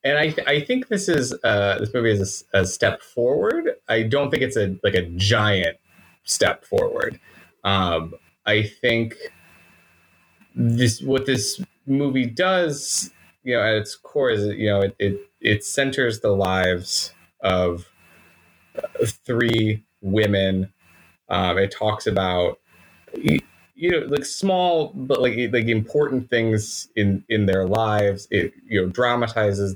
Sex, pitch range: male, 95-125 Hz